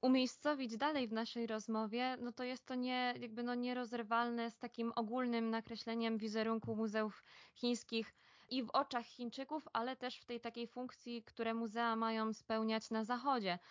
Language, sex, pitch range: Polish, female, 215-240 Hz